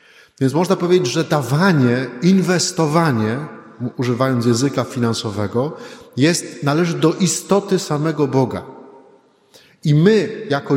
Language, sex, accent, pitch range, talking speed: Polish, male, native, 125-170 Hz, 95 wpm